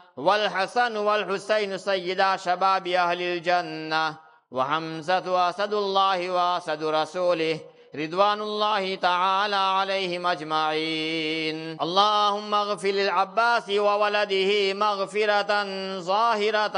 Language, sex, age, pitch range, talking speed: English, male, 50-69, 175-195 Hz, 80 wpm